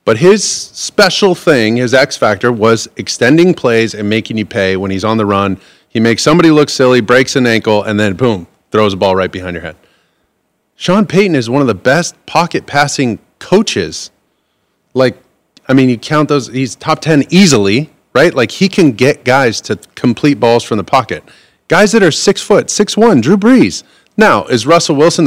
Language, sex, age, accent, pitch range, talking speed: English, male, 30-49, American, 110-155 Hz, 195 wpm